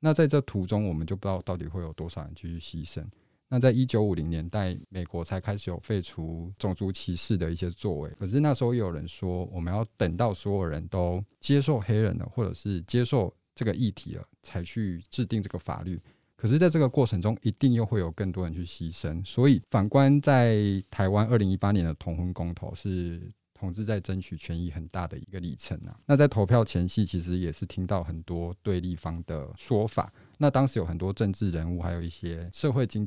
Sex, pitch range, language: male, 90-115 Hz, Chinese